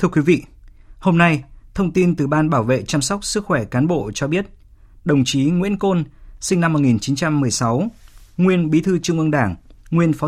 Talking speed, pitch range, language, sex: 220 wpm, 120-160 Hz, Vietnamese, male